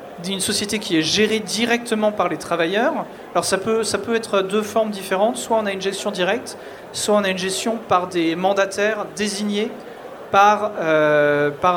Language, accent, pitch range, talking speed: French, French, 155-195 Hz, 185 wpm